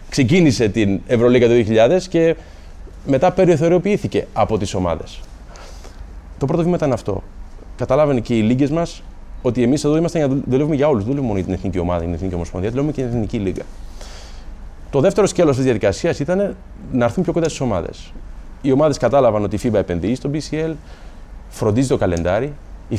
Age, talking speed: 30-49, 170 wpm